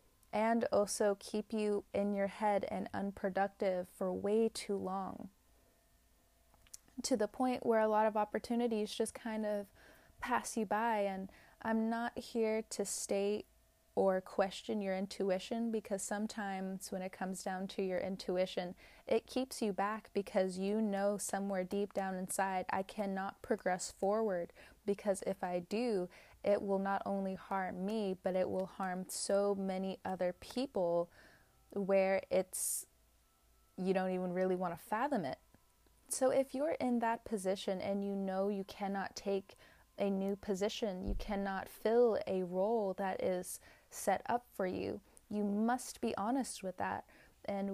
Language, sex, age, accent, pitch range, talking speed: English, female, 20-39, American, 190-220 Hz, 155 wpm